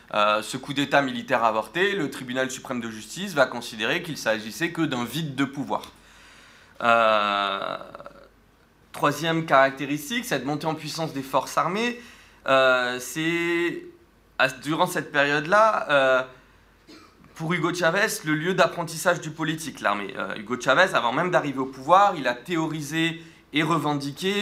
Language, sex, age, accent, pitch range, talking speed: French, male, 30-49, French, 120-155 Hz, 145 wpm